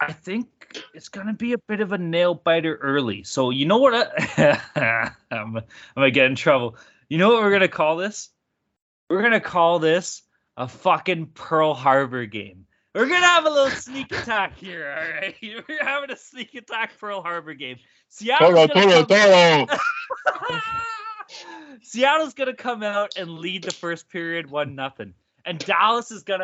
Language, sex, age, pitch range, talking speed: English, male, 20-39, 155-230 Hz, 175 wpm